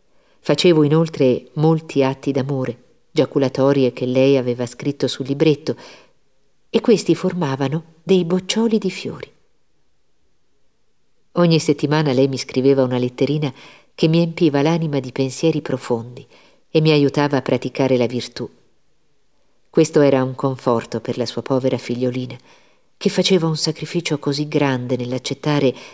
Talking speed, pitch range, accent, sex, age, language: 130 wpm, 130-160 Hz, native, female, 50-69, Italian